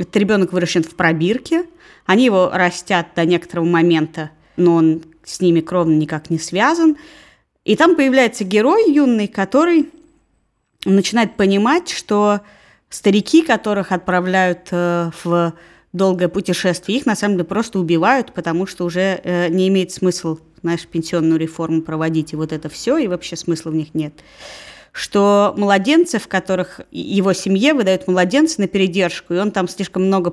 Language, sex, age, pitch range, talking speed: Russian, female, 20-39, 175-235 Hz, 145 wpm